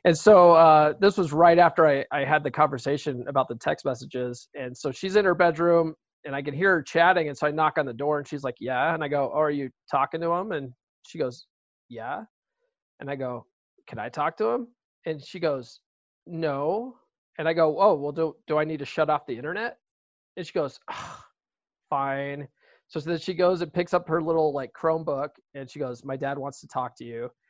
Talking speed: 225 wpm